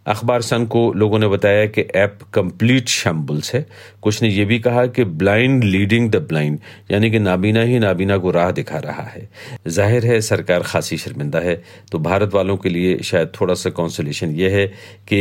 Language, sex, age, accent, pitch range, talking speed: Hindi, male, 50-69, native, 90-110 Hz, 180 wpm